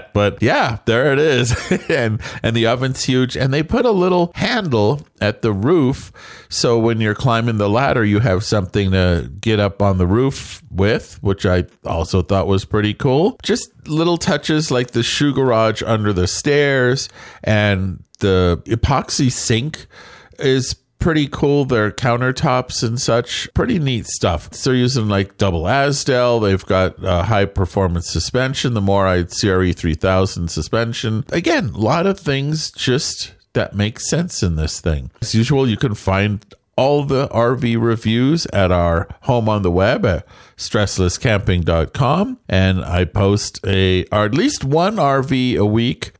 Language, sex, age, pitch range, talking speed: English, male, 40-59, 100-135 Hz, 160 wpm